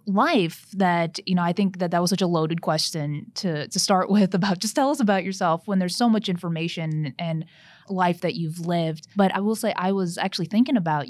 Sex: female